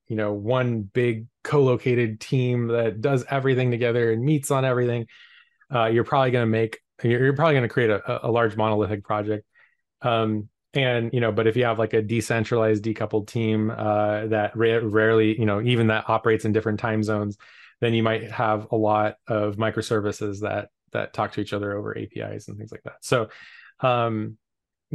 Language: English